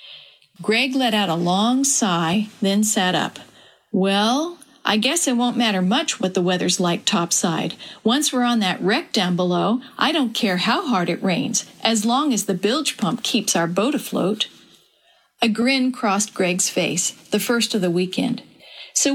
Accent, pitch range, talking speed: American, 195-250 Hz, 175 wpm